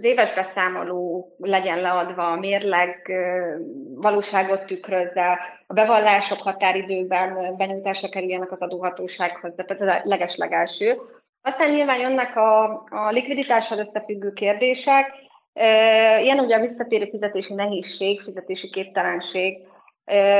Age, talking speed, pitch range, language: 30-49, 105 wpm, 185-215 Hz, Hungarian